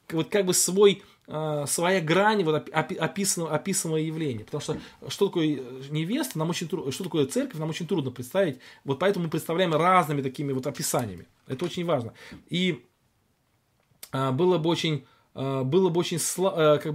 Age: 20-39